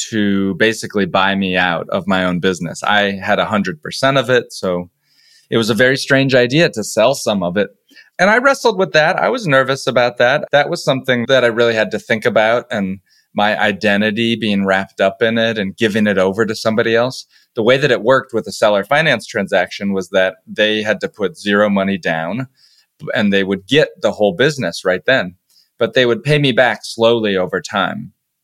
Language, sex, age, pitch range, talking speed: English, male, 20-39, 95-120 Hz, 205 wpm